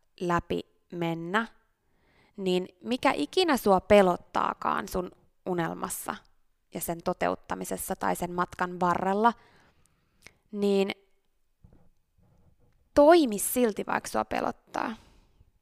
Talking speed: 85 wpm